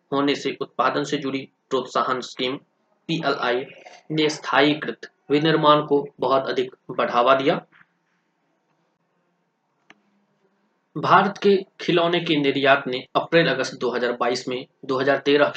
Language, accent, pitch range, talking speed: Hindi, native, 130-165 Hz, 95 wpm